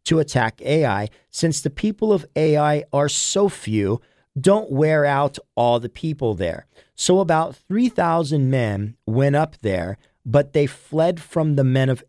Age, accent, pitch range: 40-59, American, 120-155 Hz